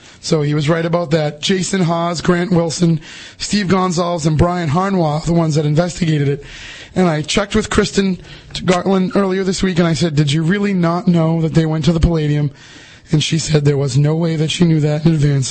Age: 20-39